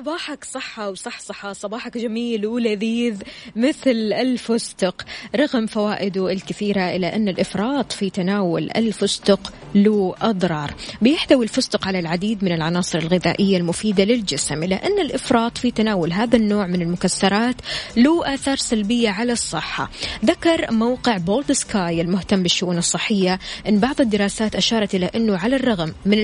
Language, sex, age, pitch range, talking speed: Arabic, female, 20-39, 190-235 Hz, 130 wpm